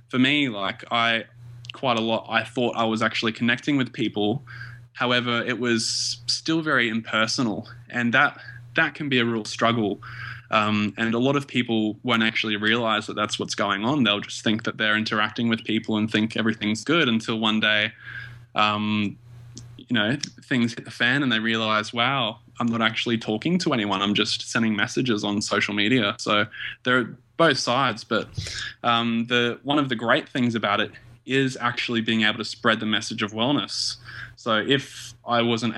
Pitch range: 110-120 Hz